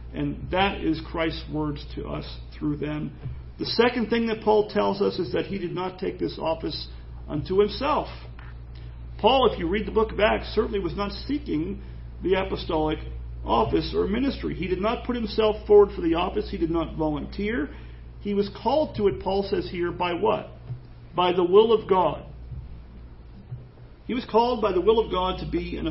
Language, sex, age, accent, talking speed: English, male, 40-59, American, 190 wpm